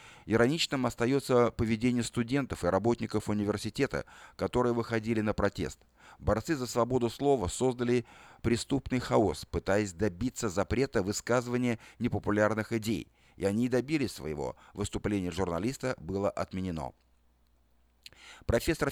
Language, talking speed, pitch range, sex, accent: Russian, 105 wpm, 100-125 Hz, male, native